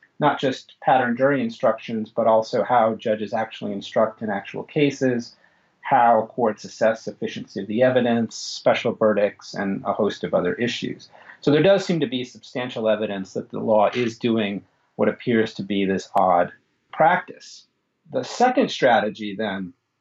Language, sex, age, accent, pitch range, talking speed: English, male, 40-59, American, 110-150 Hz, 160 wpm